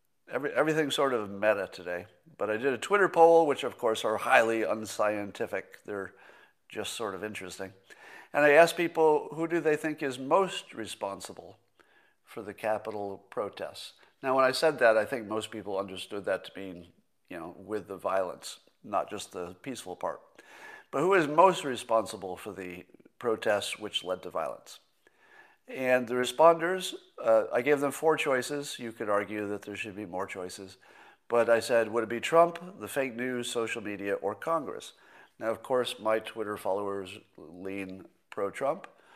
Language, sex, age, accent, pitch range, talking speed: English, male, 50-69, American, 105-155 Hz, 170 wpm